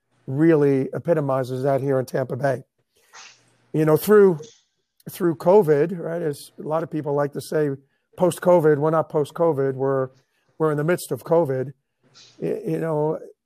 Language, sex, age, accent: English, male, 50-69, American